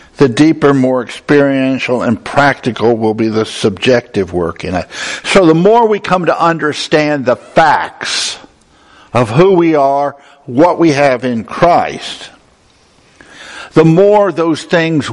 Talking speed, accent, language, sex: 140 wpm, American, English, male